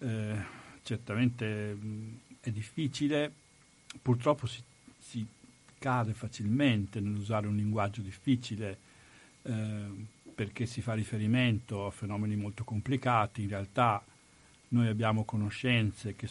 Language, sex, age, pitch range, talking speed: Italian, male, 50-69, 105-120 Hz, 105 wpm